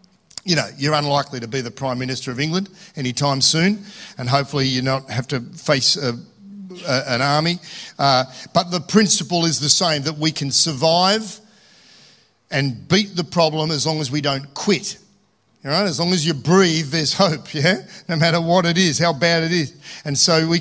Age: 50-69